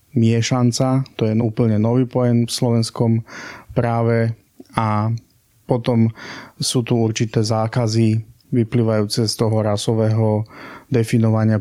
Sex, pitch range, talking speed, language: male, 110-120 Hz, 105 wpm, Slovak